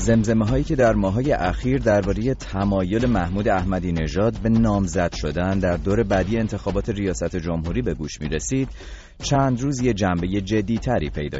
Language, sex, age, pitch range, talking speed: Persian, male, 30-49, 85-115 Hz, 165 wpm